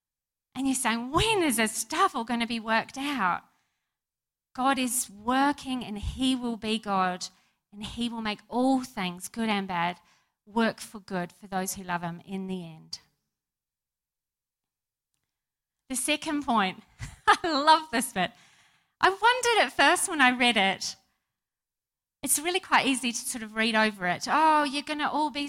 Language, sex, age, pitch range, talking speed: English, female, 40-59, 200-290 Hz, 170 wpm